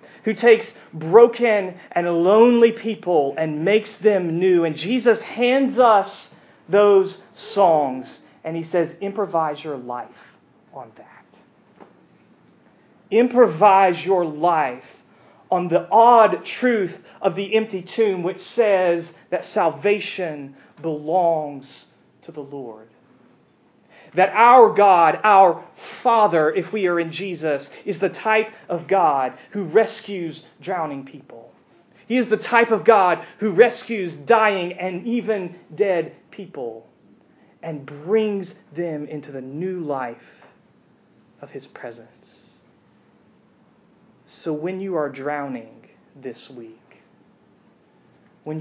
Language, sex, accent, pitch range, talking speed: English, male, American, 155-215 Hz, 115 wpm